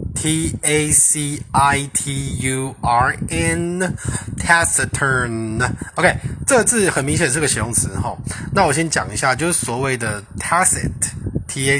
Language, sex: Chinese, male